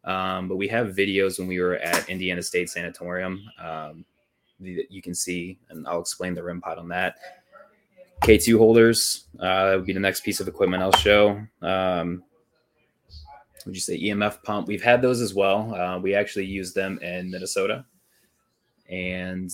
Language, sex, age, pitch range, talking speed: English, male, 20-39, 90-100 Hz, 175 wpm